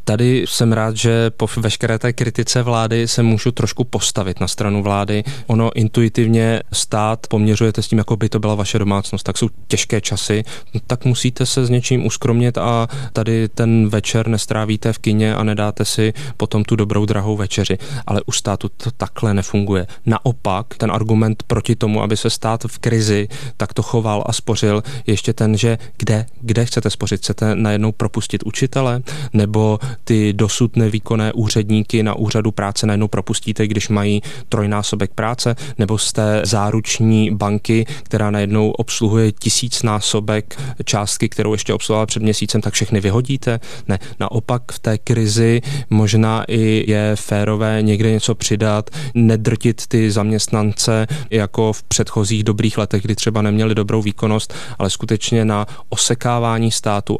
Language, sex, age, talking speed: Czech, male, 20-39, 155 wpm